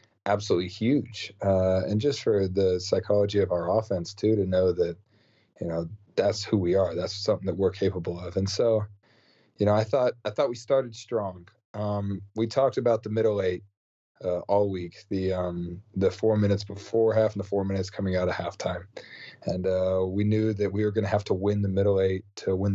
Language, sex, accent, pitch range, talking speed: English, male, American, 95-110 Hz, 210 wpm